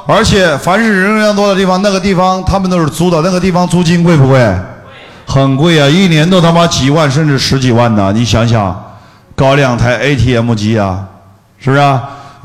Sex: male